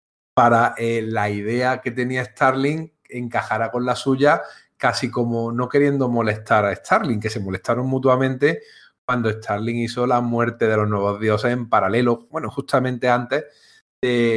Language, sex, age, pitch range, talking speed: Spanish, male, 30-49, 110-140 Hz, 155 wpm